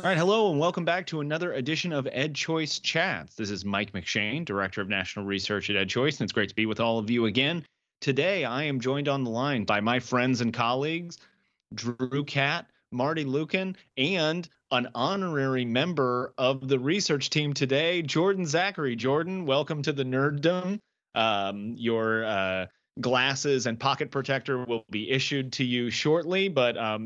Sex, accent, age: male, American, 30-49